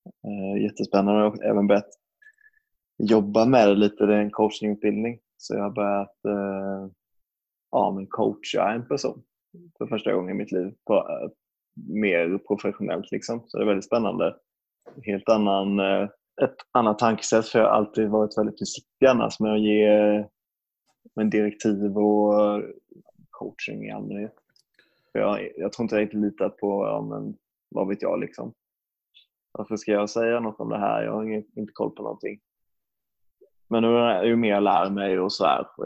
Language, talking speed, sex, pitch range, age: Swedish, 170 wpm, male, 100-110 Hz, 20-39